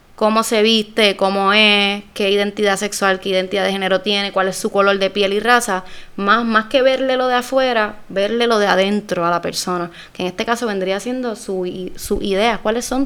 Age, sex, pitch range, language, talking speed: 20-39, female, 190-235 Hz, English, 210 wpm